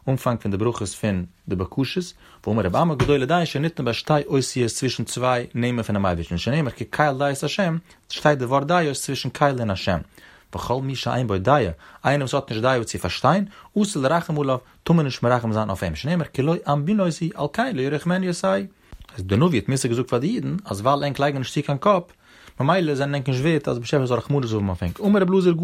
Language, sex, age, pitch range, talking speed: Hebrew, male, 30-49, 115-155 Hz, 180 wpm